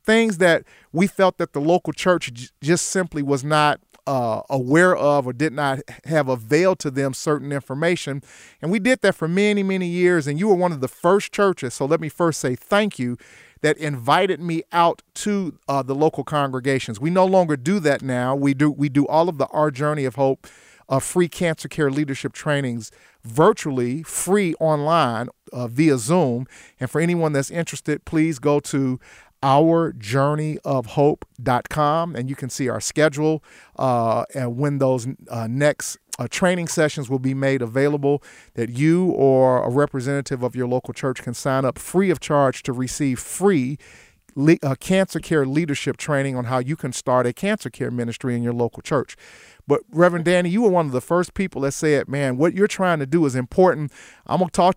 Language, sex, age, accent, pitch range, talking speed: English, male, 40-59, American, 135-170 Hz, 190 wpm